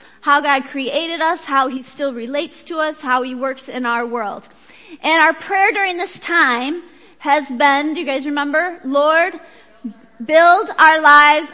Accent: American